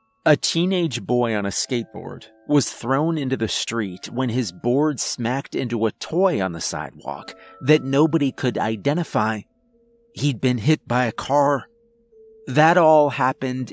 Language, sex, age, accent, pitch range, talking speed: English, male, 30-49, American, 110-150 Hz, 150 wpm